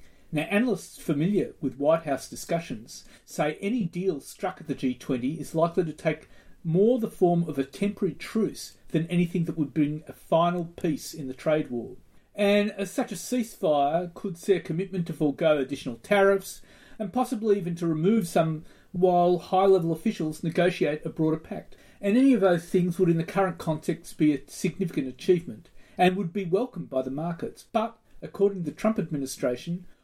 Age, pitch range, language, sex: 40-59, 150-195 Hz, English, male